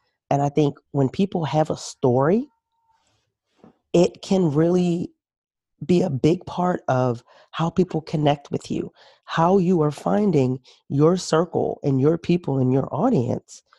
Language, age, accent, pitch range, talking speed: English, 40-59, American, 135-170 Hz, 145 wpm